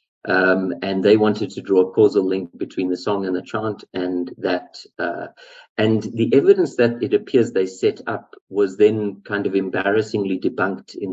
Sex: male